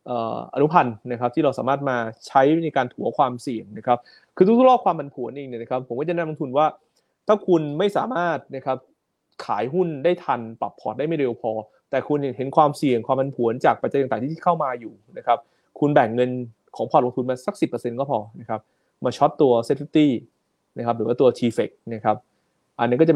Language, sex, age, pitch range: Thai, male, 20-39, 120-150 Hz